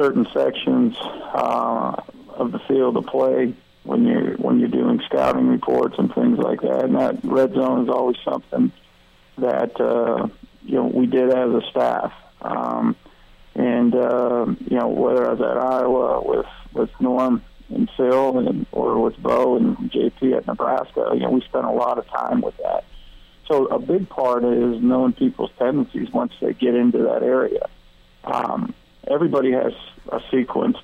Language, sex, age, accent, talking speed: English, male, 50-69, American, 170 wpm